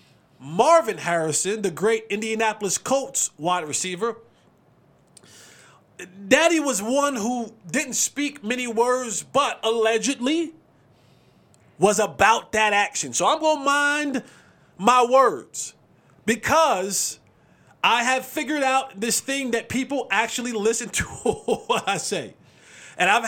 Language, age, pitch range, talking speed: English, 30-49, 205-260 Hz, 120 wpm